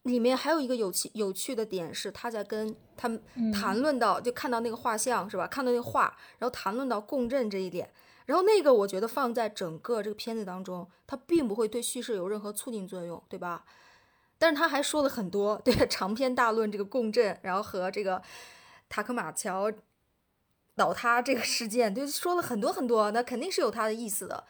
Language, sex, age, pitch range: Chinese, female, 20-39, 200-245 Hz